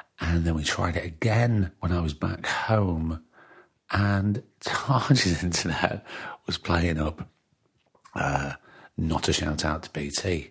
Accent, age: British, 40-59